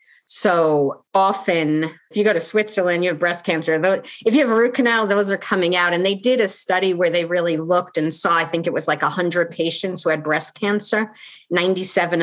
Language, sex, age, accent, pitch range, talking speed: English, female, 40-59, American, 165-210 Hz, 215 wpm